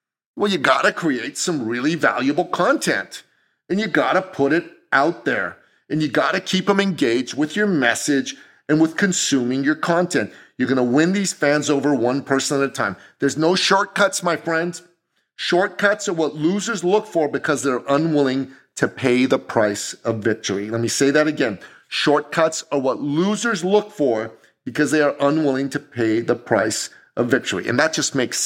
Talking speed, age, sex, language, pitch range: 180 wpm, 40-59, male, English, 130-170 Hz